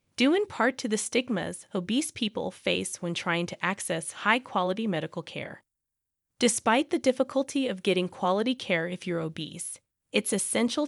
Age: 20-39